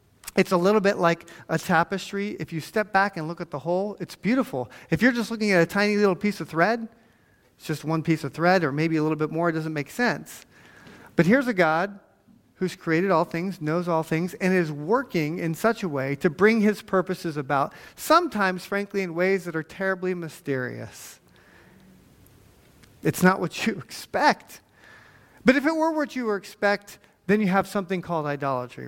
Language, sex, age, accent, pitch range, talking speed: English, male, 40-59, American, 155-200 Hz, 195 wpm